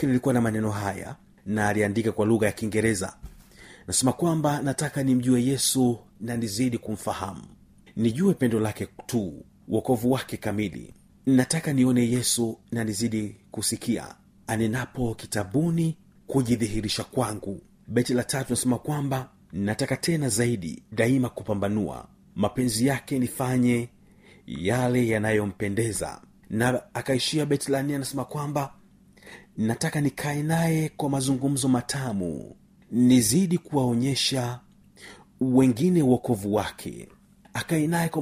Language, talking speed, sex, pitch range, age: Swahili, 110 wpm, male, 110-140 Hz, 40-59